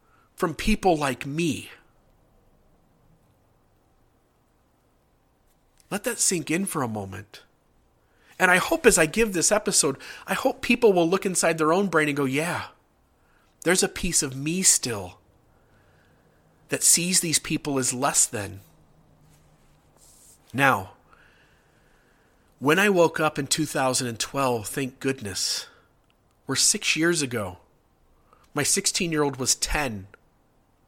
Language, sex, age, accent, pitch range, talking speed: English, male, 40-59, American, 120-165 Hz, 120 wpm